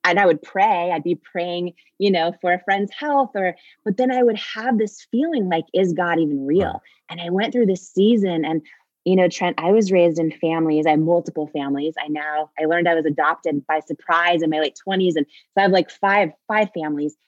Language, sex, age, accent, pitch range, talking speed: English, female, 20-39, American, 155-200 Hz, 230 wpm